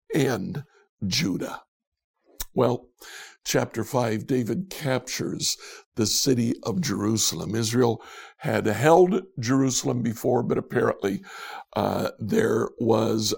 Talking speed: 95 wpm